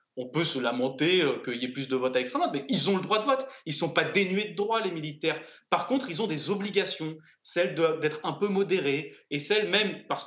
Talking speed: 250 wpm